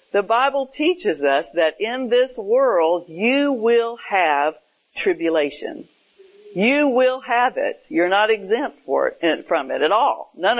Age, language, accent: 50-69, English, American